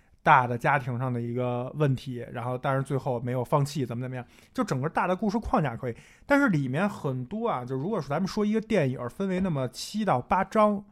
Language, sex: Chinese, male